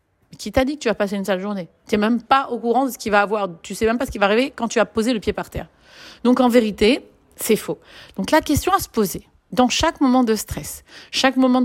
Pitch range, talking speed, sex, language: 195-260 Hz, 290 wpm, female, French